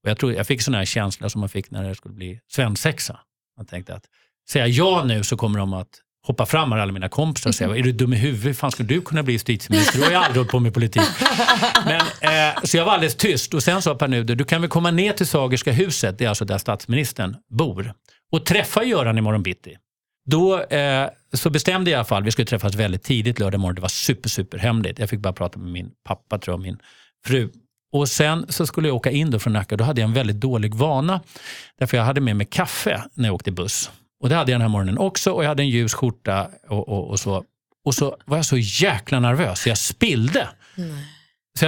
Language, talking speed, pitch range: Swedish, 245 wpm, 105-150 Hz